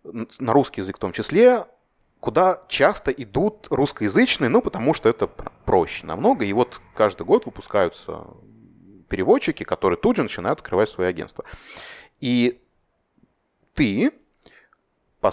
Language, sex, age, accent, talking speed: Russian, male, 30-49, native, 125 wpm